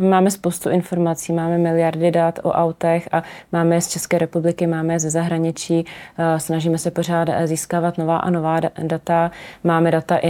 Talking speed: 165 wpm